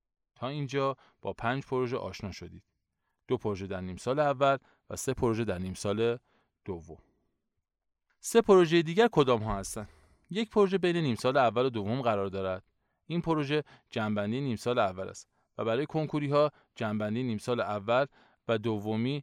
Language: Persian